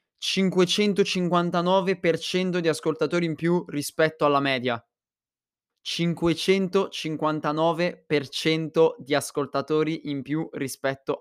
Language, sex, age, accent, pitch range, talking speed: Italian, male, 20-39, native, 150-190 Hz, 70 wpm